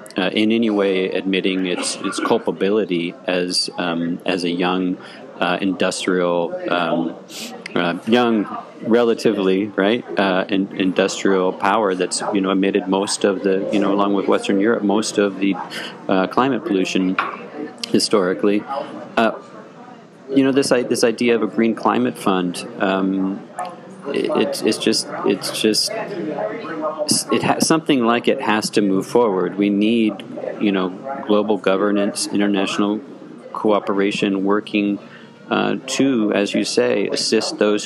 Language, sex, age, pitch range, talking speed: English, male, 40-59, 95-110 Hz, 140 wpm